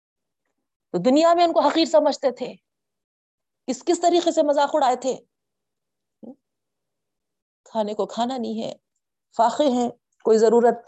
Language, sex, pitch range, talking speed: Urdu, female, 195-260 Hz, 125 wpm